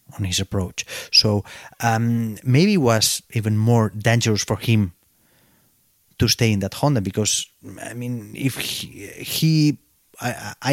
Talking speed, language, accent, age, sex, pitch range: 135 wpm, English, Spanish, 30-49, male, 100-120 Hz